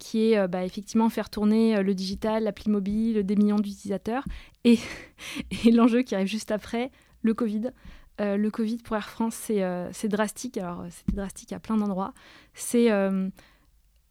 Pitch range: 200-230 Hz